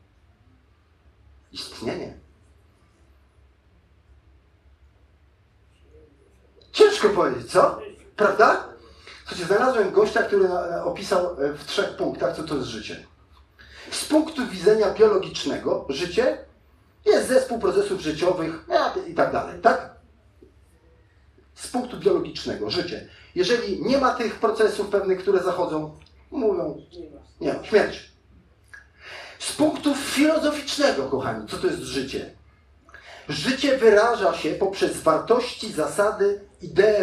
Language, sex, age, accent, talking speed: Polish, male, 40-59, native, 100 wpm